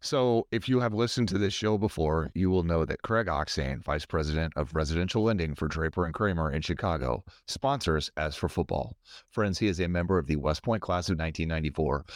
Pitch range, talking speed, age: 80-110 Hz, 205 wpm, 40-59